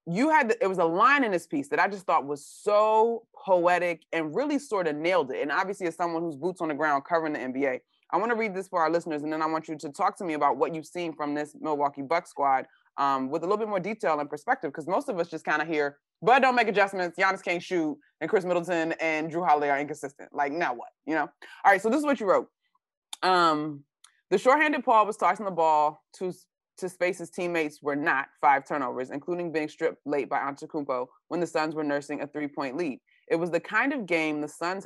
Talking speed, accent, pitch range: 245 wpm, American, 150-190 Hz